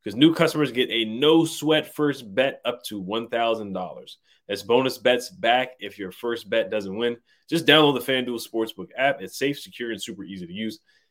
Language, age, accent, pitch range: English, 20-39, American, 100-130 Hz